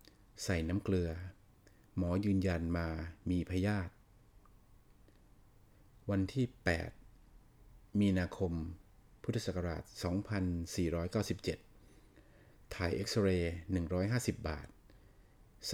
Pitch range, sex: 90-105 Hz, male